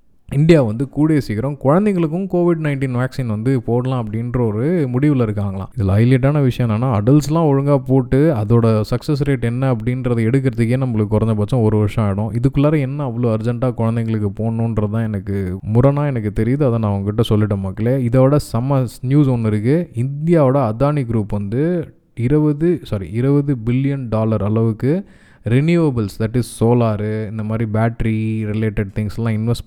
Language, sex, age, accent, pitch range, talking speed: Tamil, male, 20-39, native, 110-130 Hz, 145 wpm